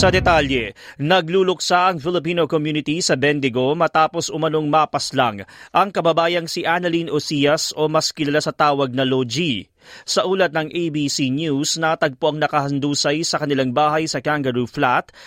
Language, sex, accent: Filipino, male, native